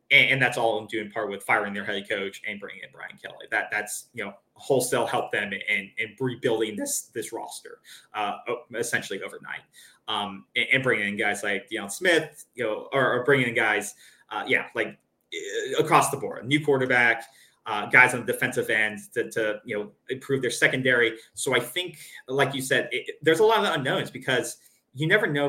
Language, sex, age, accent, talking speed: English, male, 20-39, American, 205 wpm